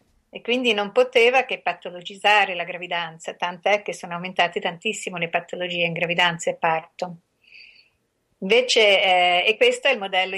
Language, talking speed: Italian, 140 wpm